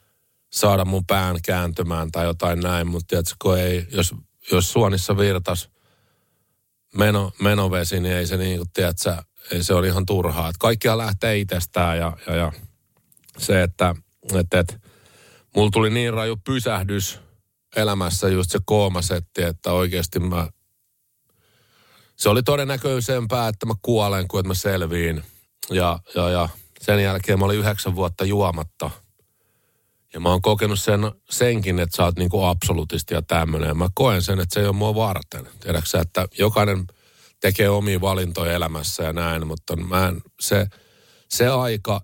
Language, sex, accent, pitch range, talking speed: Finnish, male, native, 90-105 Hz, 145 wpm